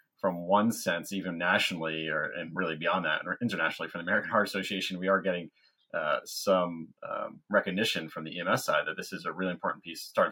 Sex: male